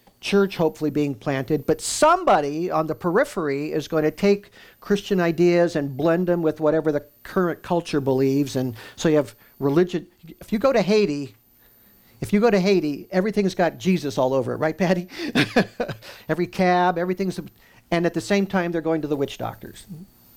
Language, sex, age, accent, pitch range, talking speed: English, male, 50-69, American, 140-185 Hz, 180 wpm